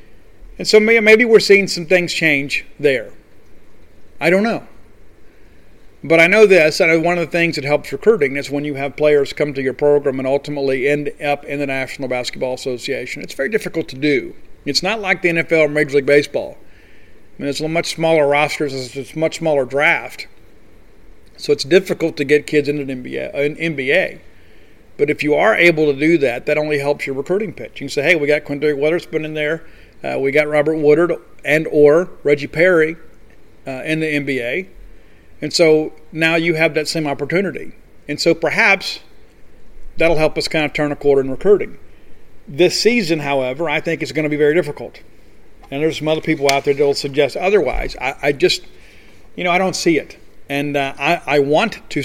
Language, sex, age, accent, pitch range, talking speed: English, male, 50-69, American, 140-165 Hz, 200 wpm